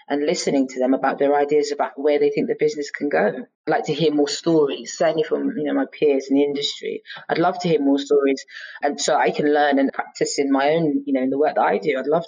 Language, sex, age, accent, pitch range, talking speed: English, female, 20-39, British, 135-155 Hz, 275 wpm